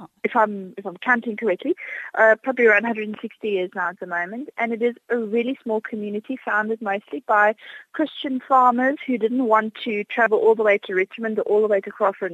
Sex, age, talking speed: female, 20-39, 225 wpm